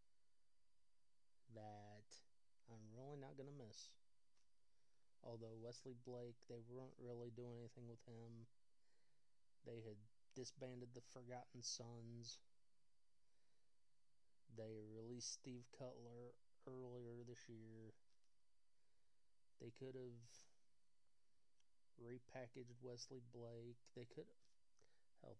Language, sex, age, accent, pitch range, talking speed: English, male, 30-49, American, 110-125 Hz, 90 wpm